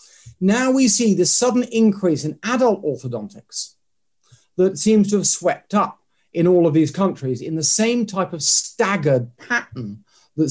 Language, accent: English, British